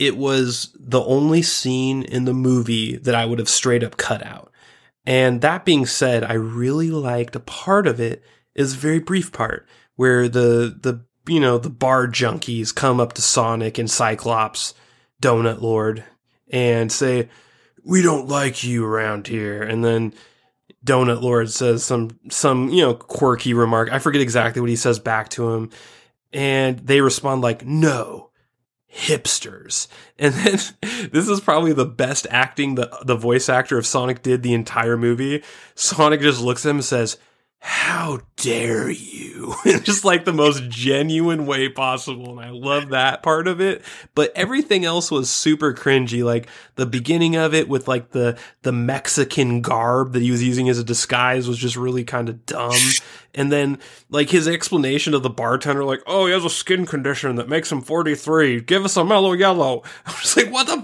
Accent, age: American, 20-39